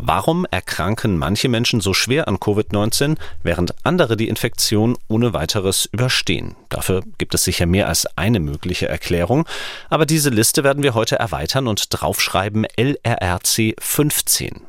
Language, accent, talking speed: German, German, 145 wpm